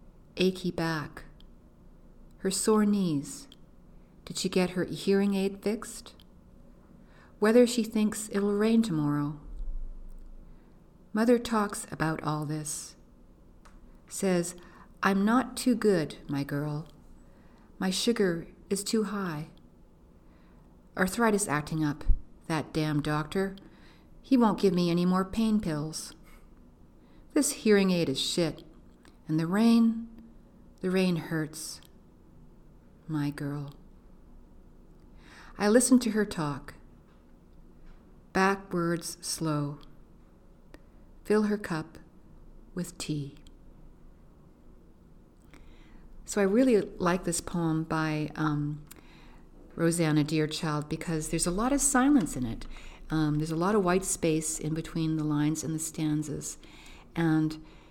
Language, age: English, 50-69